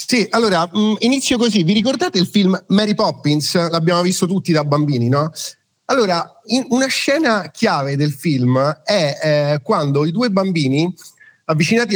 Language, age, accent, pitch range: Italian, 40-59, native, 155-215 Hz